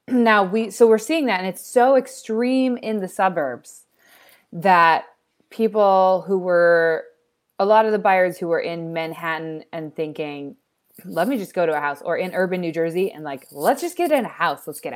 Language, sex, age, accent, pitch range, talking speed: English, female, 20-39, American, 155-205 Hz, 200 wpm